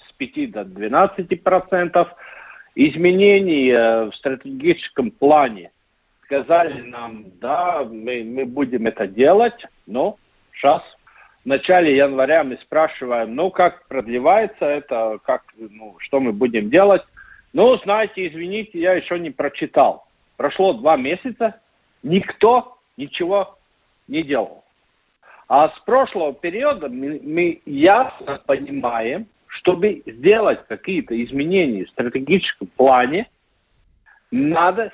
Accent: native